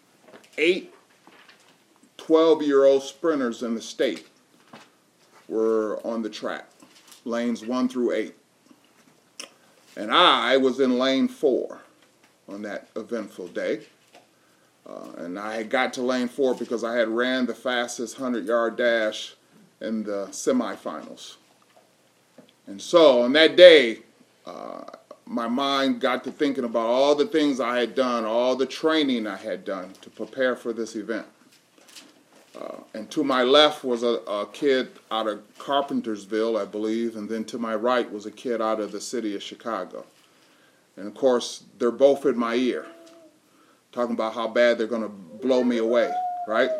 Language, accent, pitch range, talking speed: English, American, 115-140 Hz, 150 wpm